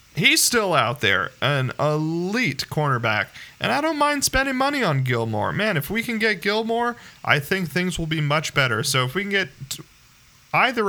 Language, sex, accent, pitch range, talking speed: English, male, American, 125-170 Hz, 185 wpm